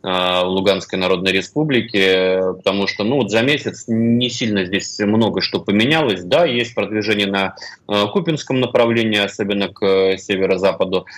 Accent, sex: native, male